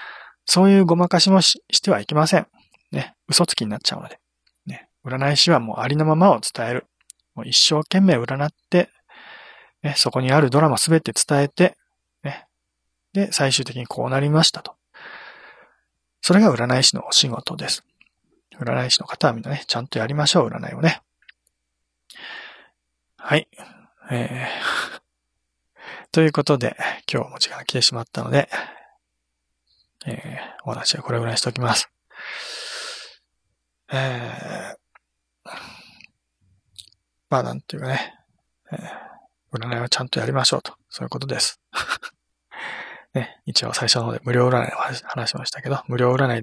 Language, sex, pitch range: Japanese, male, 115-155 Hz